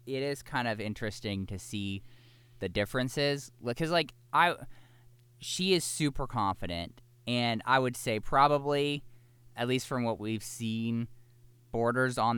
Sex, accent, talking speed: male, American, 140 wpm